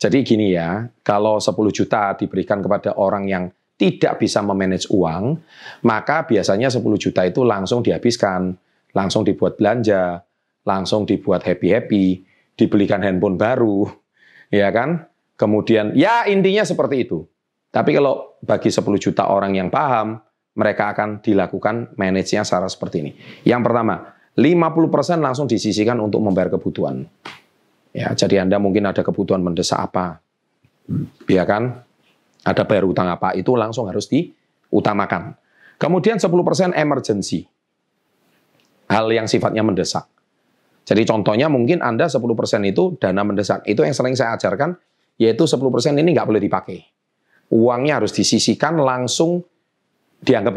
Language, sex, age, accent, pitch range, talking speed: Indonesian, male, 30-49, native, 95-125 Hz, 130 wpm